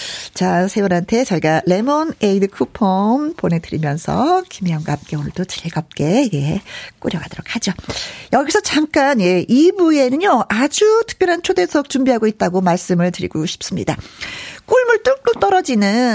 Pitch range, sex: 185-300 Hz, female